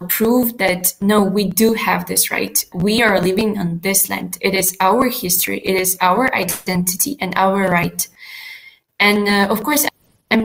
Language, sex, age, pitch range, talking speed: English, female, 20-39, 185-220 Hz, 170 wpm